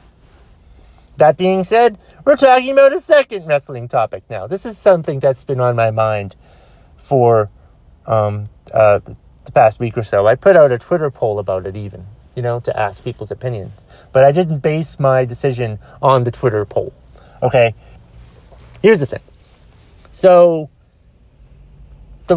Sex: male